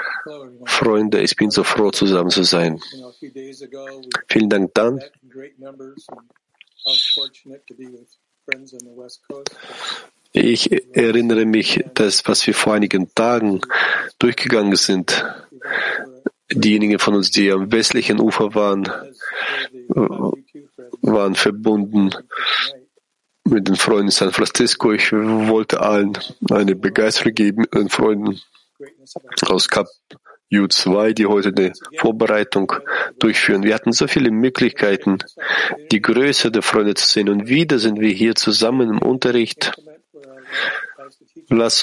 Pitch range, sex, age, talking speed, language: 100-125 Hz, male, 40-59, 105 wpm, German